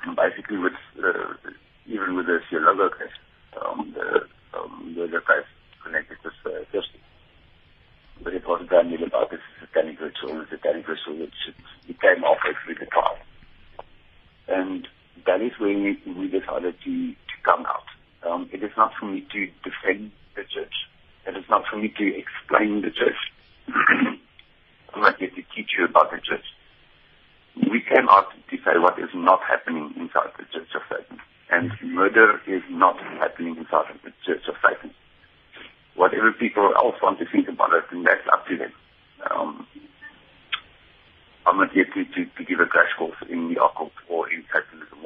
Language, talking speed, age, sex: English, 170 wpm, 50-69, male